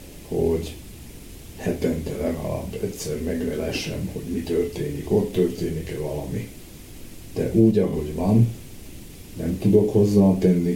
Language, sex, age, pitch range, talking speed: Hungarian, male, 60-79, 85-95 Hz, 100 wpm